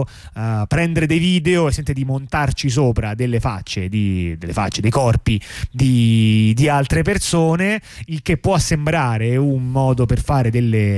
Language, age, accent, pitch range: Italian, 30-49, native, 110-145 Hz